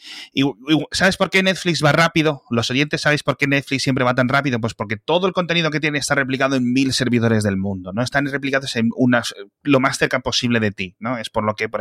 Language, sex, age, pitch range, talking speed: Spanish, male, 30-49, 105-135 Hz, 235 wpm